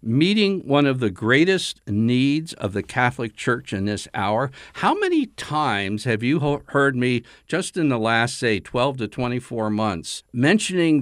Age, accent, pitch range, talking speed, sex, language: 60-79, American, 105-140 Hz, 165 wpm, male, English